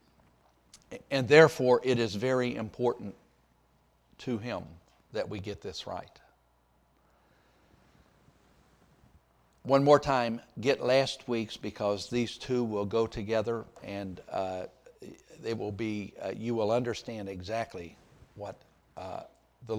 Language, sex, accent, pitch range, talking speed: English, male, American, 95-120 Hz, 115 wpm